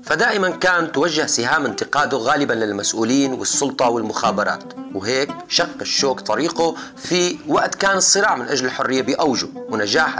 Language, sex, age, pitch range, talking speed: Arabic, male, 30-49, 125-170 Hz, 130 wpm